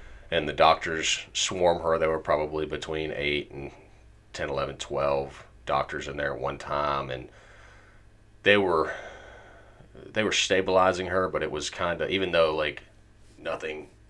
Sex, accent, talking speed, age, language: male, American, 155 wpm, 30-49, English